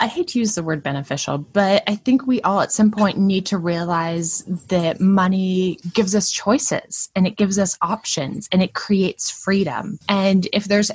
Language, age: English, 10-29